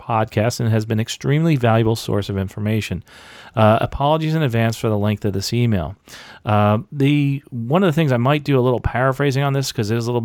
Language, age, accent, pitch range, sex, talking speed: English, 40-59, American, 105-140 Hz, male, 235 wpm